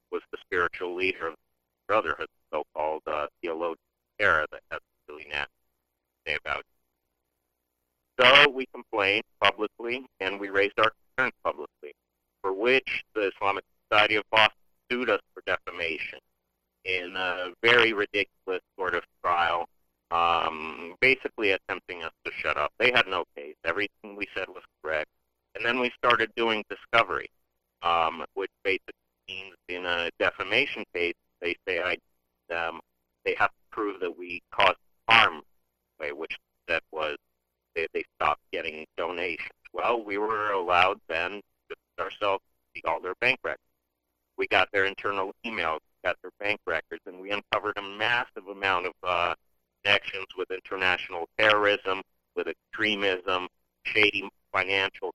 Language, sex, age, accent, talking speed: English, male, 50-69, American, 145 wpm